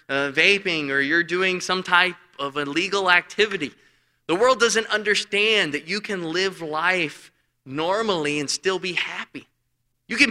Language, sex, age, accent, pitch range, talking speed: English, male, 20-39, American, 140-195 Hz, 150 wpm